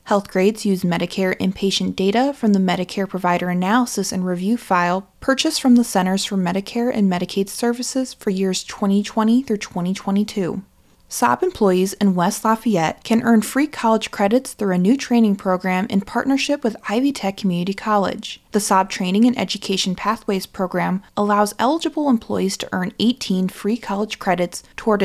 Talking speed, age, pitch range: 160 wpm, 20-39, 190-230 Hz